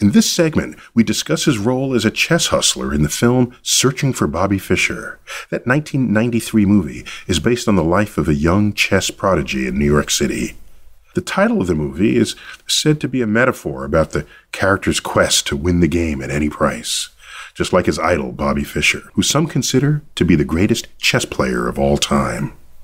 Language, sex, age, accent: English, male, 40-59, American